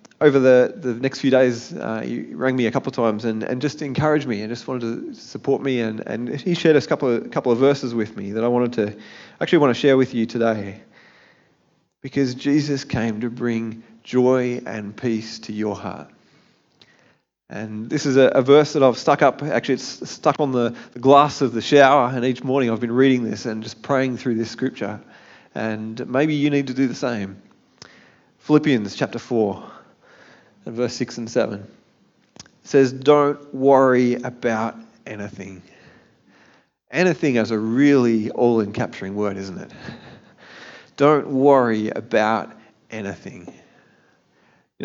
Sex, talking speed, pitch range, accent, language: male, 170 wpm, 110-140 Hz, Australian, English